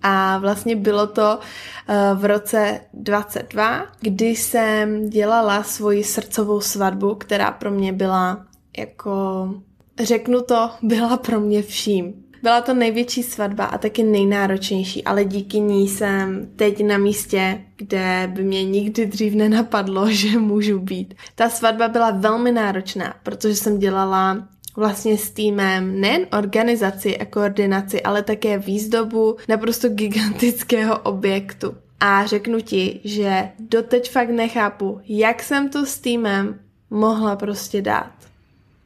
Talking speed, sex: 130 wpm, female